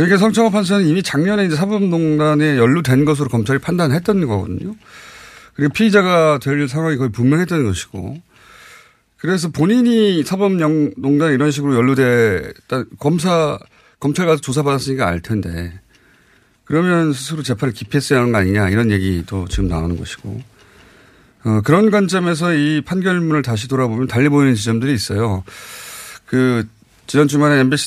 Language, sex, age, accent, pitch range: Korean, male, 30-49, native, 115-160 Hz